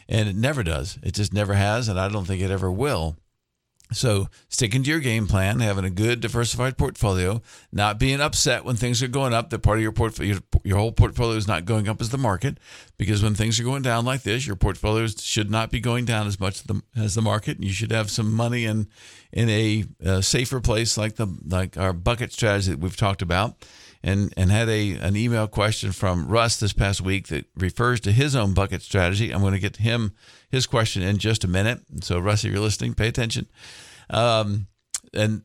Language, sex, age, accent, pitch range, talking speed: English, male, 50-69, American, 95-115 Hz, 220 wpm